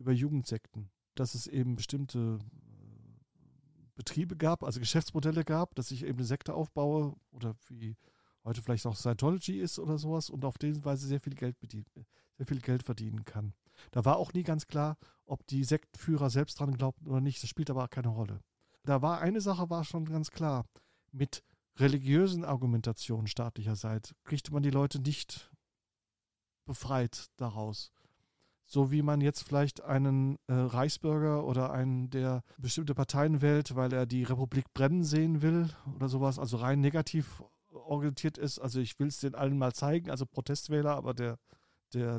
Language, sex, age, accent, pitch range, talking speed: German, male, 40-59, German, 125-150 Hz, 170 wpm